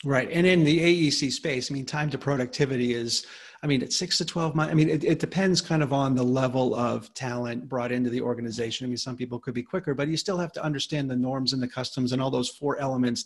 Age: 40-59